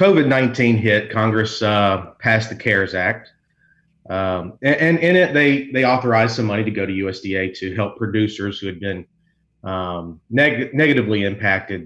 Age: 40-59